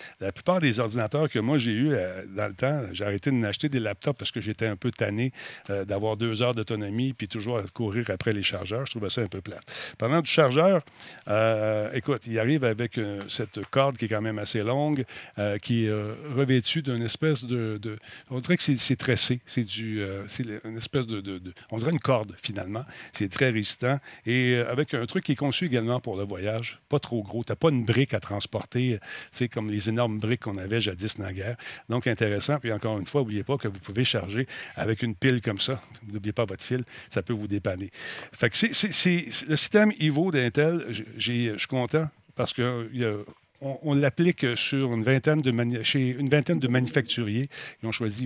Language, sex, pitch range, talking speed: French, male, 110-135 Hz, 225 wpm